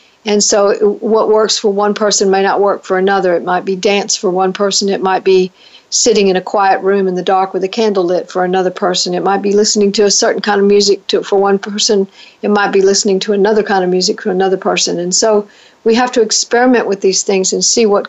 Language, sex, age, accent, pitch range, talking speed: English, female, 50-69, American, 190-225 Hz, 245 wpm